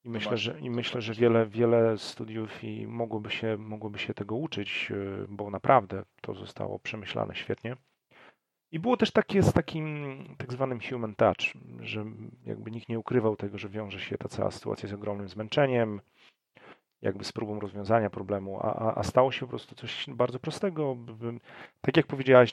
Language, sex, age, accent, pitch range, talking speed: Polish, male, 40-59, native, 105-125 Hz, 175 wpm